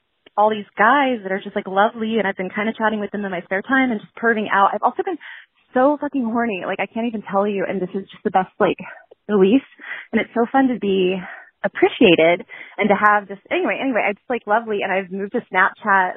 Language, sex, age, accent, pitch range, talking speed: English, female, 20-39, American, 185-240 Hz, 245 wpm